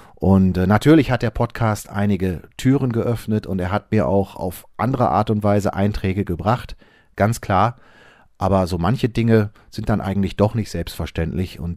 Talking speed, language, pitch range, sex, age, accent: 170 wpm, German, 95-120 Hz, male, 40-59, German